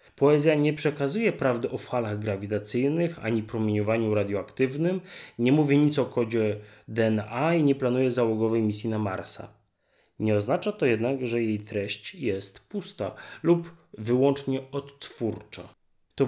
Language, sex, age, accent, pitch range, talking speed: Polish, male, 30-49, native, 110-155 Hz, 135 wpm